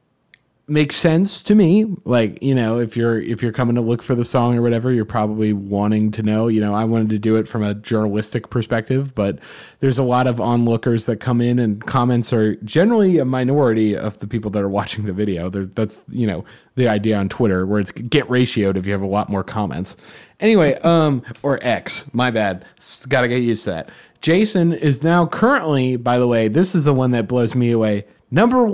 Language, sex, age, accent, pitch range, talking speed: English, male, 30-49, American, 110-165 Hz, 220 wpm